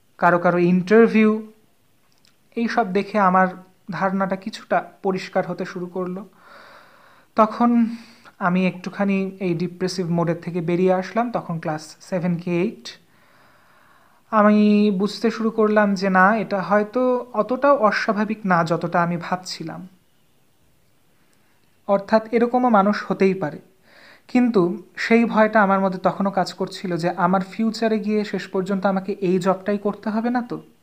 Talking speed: 130 wpm